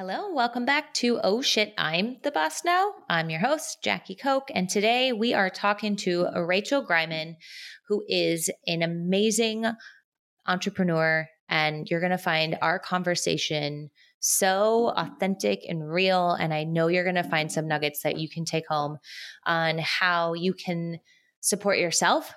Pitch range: 165-220 Hz